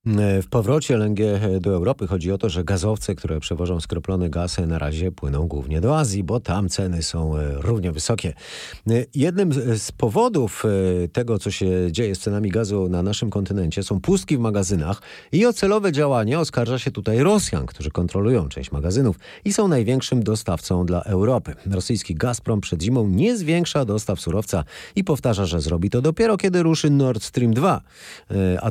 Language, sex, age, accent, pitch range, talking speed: Polish, male, 40-59, native, 90-125 Hz, 170 wpm